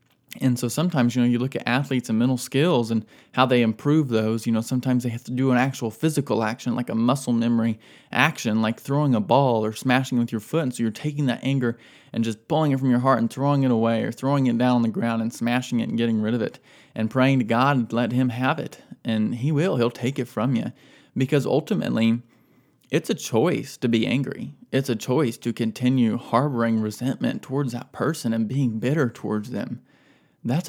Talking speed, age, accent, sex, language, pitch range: 225 wpm, 20-39, American, male, English, 120-150 Hz